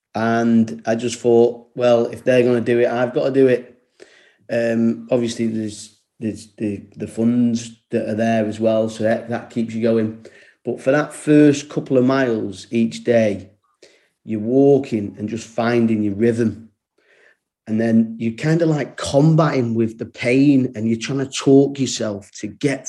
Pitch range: 115-135 Hz